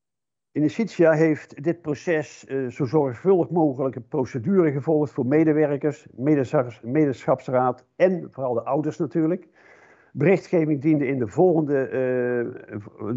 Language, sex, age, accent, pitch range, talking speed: Dutch, male, 50-69, Dutch, 125-160 Hz, 115 wpm